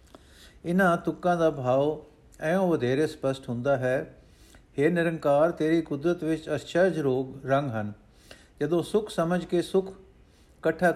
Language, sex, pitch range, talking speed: Punjabi, male, 135-175 Hz, 130 wpm